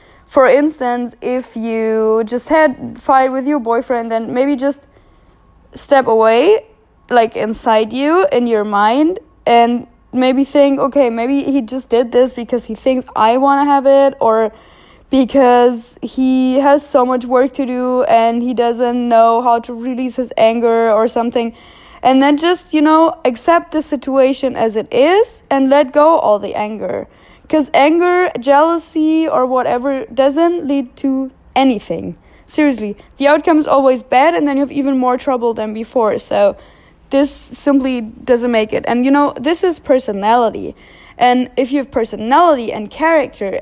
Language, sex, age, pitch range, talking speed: English, female, 10-29, 230-280 Hz, 165 wpm